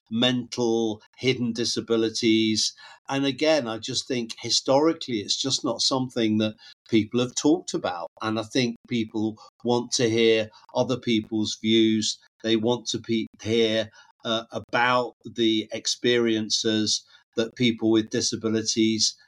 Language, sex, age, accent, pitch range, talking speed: English, male, 50-69, British, 110-130 Hz, 125 wpm